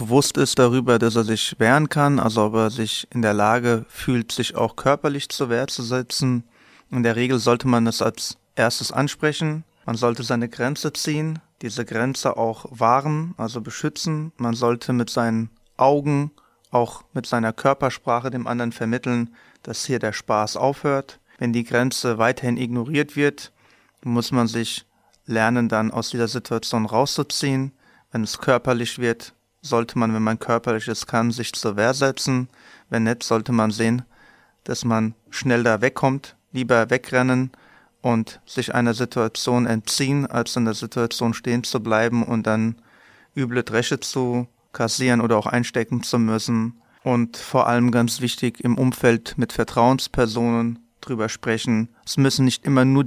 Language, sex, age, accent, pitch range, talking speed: German, male, 30-49, German, 115-130 Hz, 160 wpm